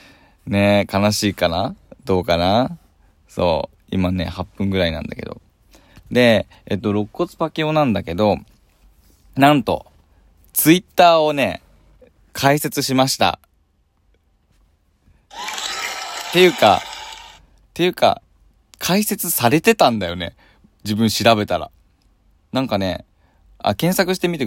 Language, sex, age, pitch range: Japanese, male, 20-39, 90-135 Hz